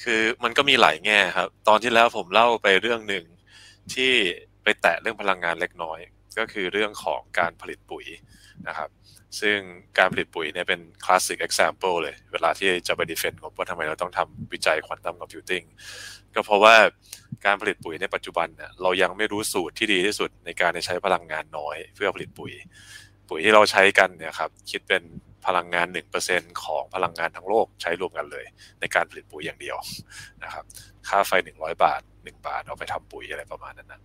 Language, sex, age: Thai, male, 20-39